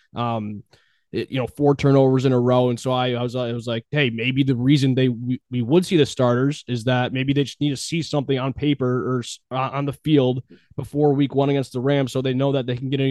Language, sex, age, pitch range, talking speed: English, male, 20-39, 125-145 Hz, 265 wpm